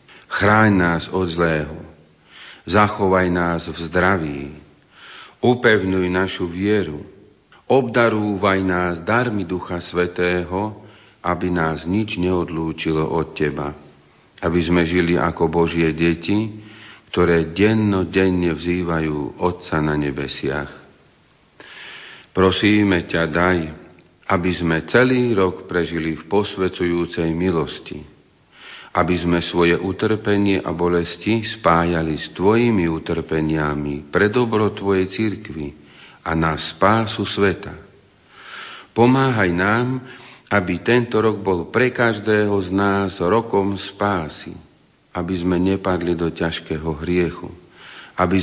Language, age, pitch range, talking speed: Slovak, 50-69, 85-100 Hz, 100 wpm